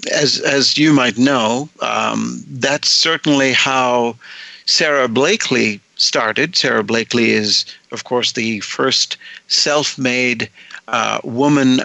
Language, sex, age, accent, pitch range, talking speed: English, male, 50-69, American, 115-135 Hz, 110 wpm